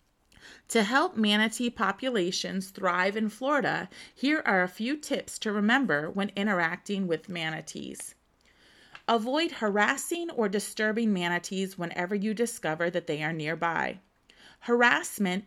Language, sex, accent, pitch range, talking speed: English, female, American, 185-245 Hz, 120 wpm